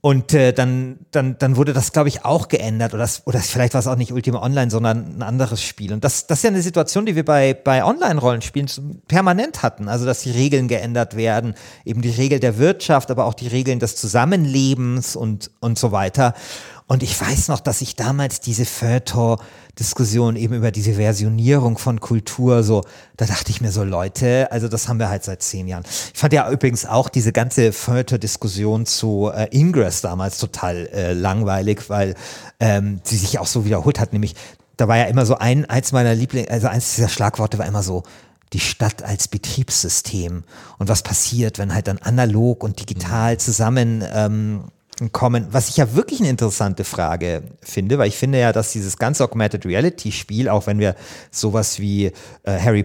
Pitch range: 105-130 Hz